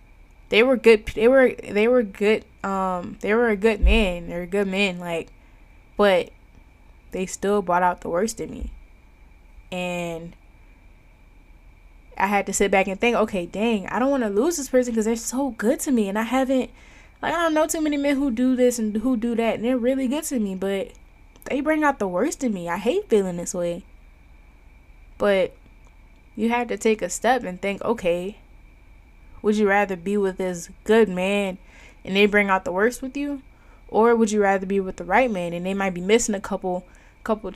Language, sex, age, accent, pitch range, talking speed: English, female, 10-29, American, 175-225 Hz, 210 wpm